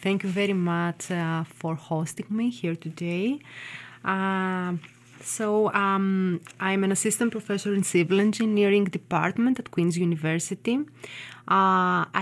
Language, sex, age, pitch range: English, female, 30-49, 170-210 Hz